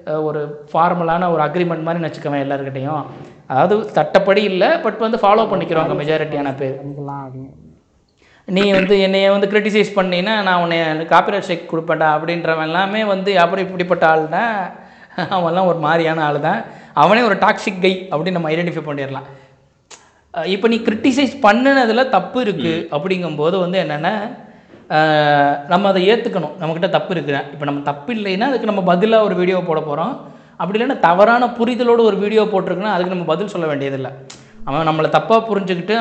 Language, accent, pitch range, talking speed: Tamil, native, 155-200 Hz, 115 wpm